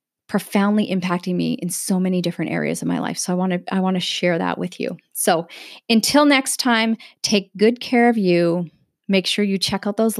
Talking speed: 220 wpm